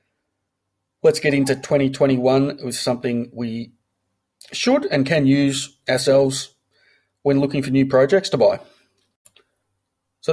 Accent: Australian